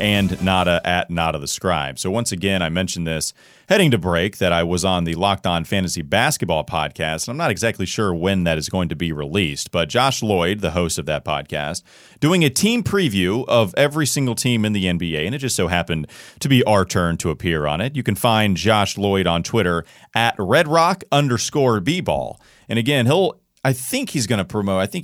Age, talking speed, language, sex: 40-59, 220 wpm, English, male